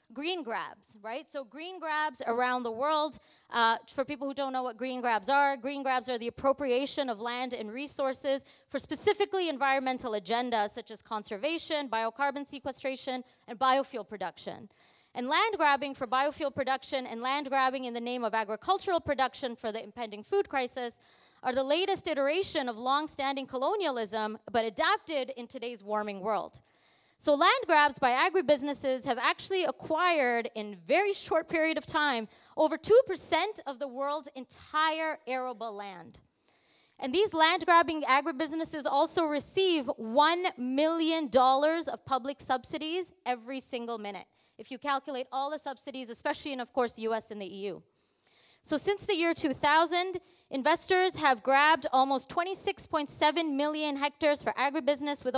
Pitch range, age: 245-310 Hz, 30-49